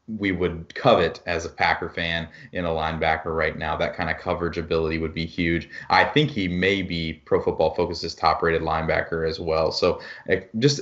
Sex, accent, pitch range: male, American, 85-110 Hz